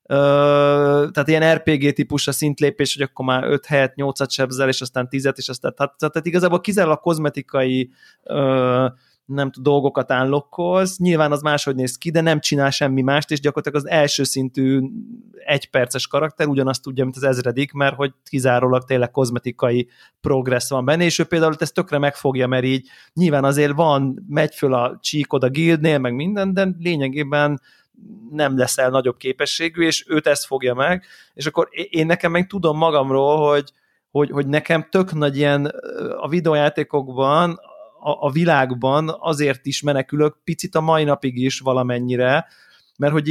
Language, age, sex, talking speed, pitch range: Hungarian, 30-49, male, 160 wpm, 135-160 Hz